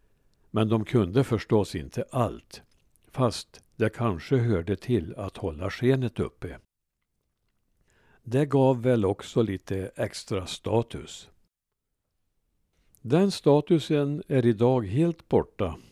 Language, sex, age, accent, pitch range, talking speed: Swedish, male, 60-79, Norwegian, 100-135 Hz, 105 wpm